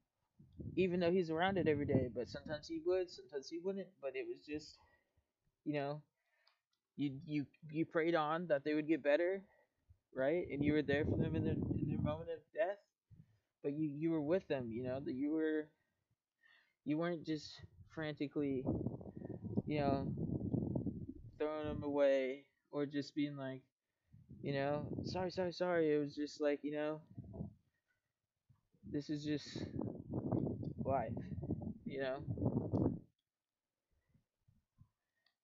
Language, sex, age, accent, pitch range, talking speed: English, male, 20-39, American, 130-160 Hz, 145 wpm